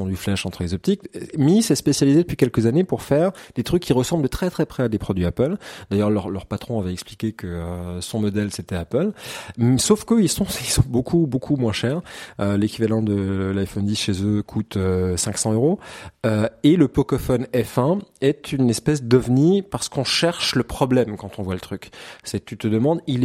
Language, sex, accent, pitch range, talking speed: French, male, French, 100-135 Hz, 210 wpm